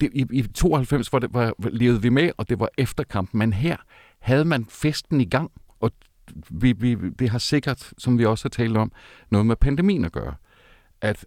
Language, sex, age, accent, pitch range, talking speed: Danish, male, 60-79, native, 95-135 Hz, 175 wpm